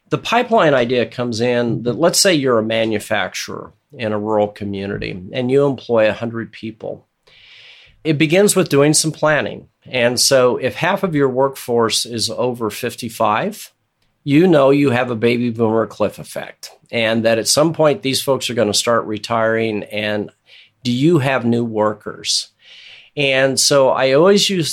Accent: American